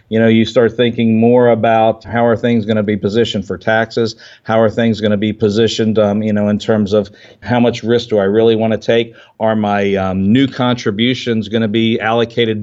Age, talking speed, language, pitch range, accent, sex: 50-69, 225 wpm, English, 110-120 Hz, American, male